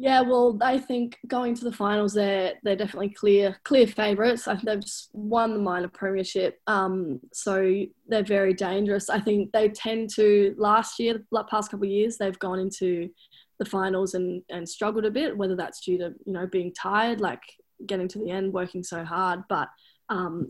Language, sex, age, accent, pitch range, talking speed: English, female, 20-39, Australian, 190-215 Hz, 195 wpm